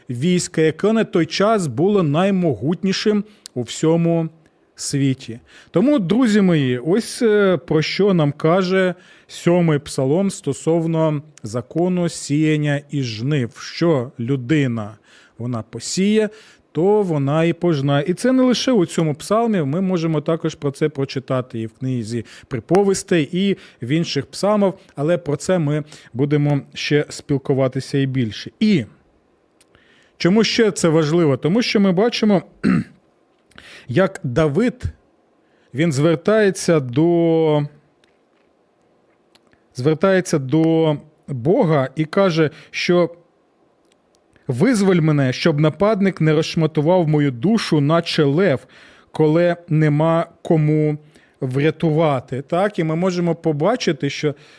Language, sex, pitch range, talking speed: Ukrainian, male, 140-185 Hz, 115 wpm